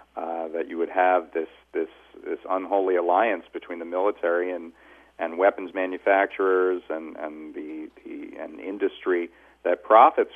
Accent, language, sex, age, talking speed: American, English, male, 50-69, 150 wpm